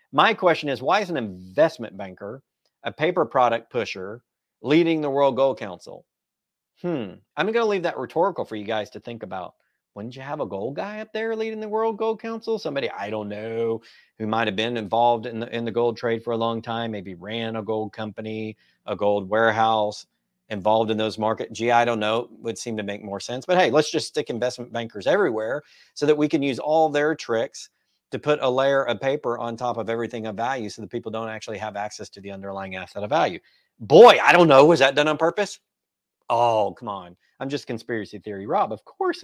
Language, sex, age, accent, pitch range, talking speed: English, male, 40-59, American, 110-145 Hz, 220 wpm